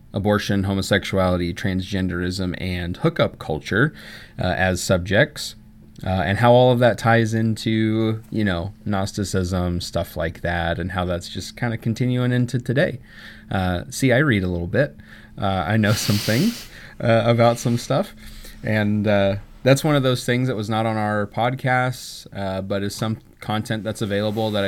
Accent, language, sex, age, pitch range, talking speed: American, English, male, 30-49, 95-120 Hz, 165 wpm